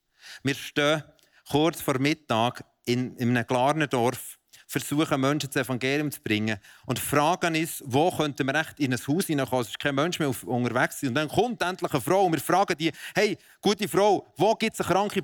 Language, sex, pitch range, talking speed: German, male, 110-155 Hz, 195 wpm